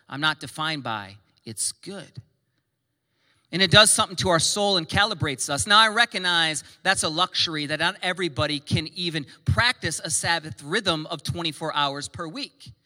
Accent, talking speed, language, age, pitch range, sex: American, 170 wpm, English, 40-59, 125-165 Hz, male